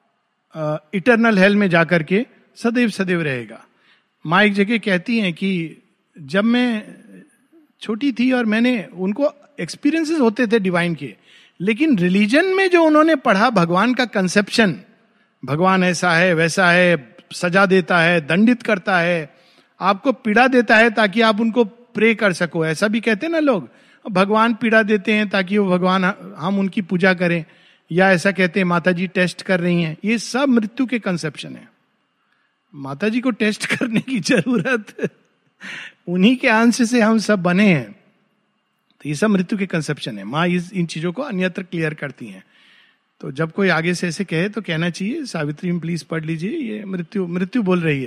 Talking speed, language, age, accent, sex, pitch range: 170 wpm, Hindi, 50-69, native, male, 175-230 Hz